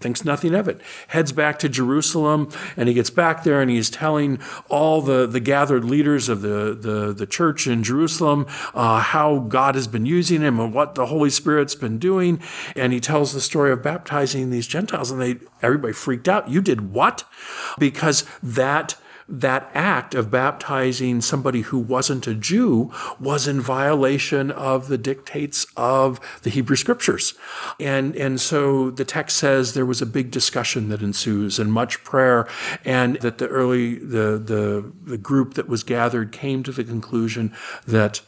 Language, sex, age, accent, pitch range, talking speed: English, male, 50-69, American, 115-145 Hz, 175 wpm